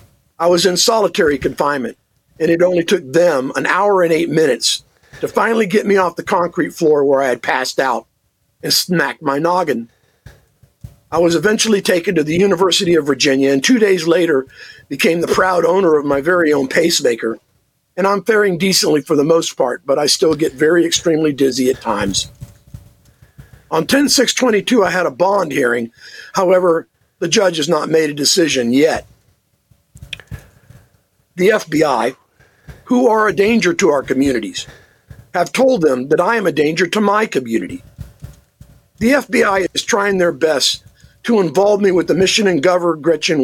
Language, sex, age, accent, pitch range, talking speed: English, male, 50-69, American, 140-195 Hz, 170 wpm